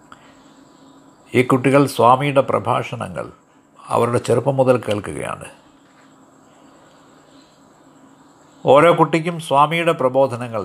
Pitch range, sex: 125-160 Hz, male